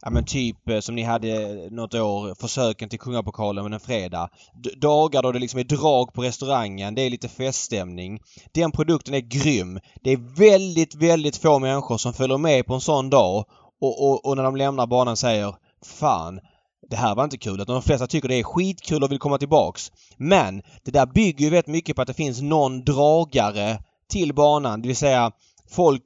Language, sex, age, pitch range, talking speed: Swedish, male, 20-39, 115-145 Hz, 205 wpm